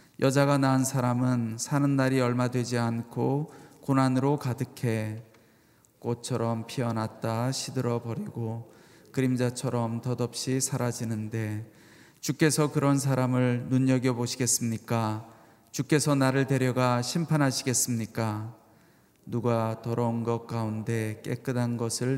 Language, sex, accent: Korean, male, native